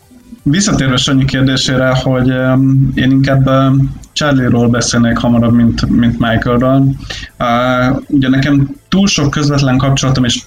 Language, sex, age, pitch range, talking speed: Hungarian, male, 20-39, 115-135 Hz, 115 wpm